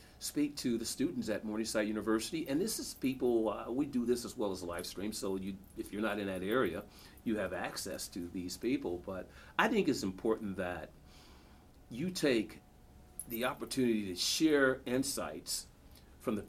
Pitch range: 90-115 Hz